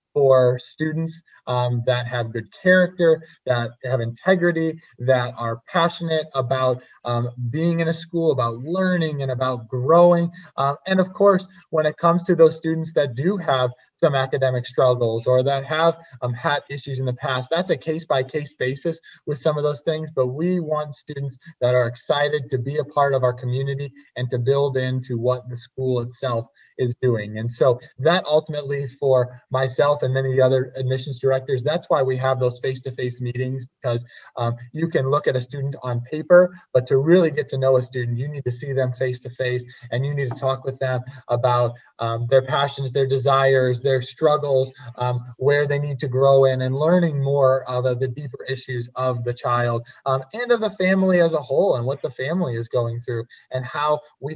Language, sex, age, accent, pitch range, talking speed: English, male, 20-39, American, 125-150 Hz, 195 wpm